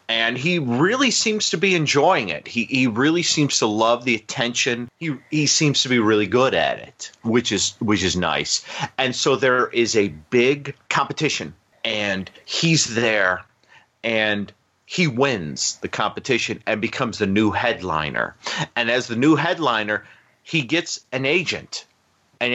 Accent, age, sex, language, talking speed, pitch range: American, 40-59, male, English, 160 wpm, 100-125 Hz